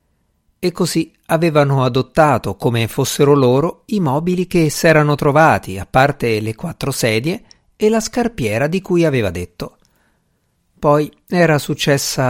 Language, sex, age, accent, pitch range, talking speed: Italian, male, 50-69, native, 120-170 Hz, 130 wpm